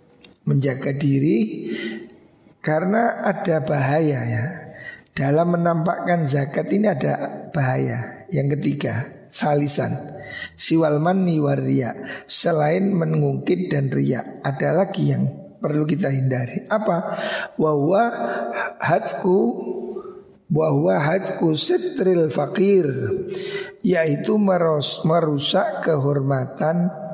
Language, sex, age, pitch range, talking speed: Indonesian, male, 60-79, 140-190 Hz, 85 wpm